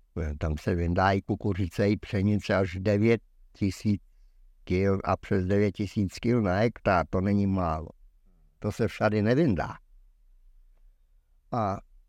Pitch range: 90-120 Hz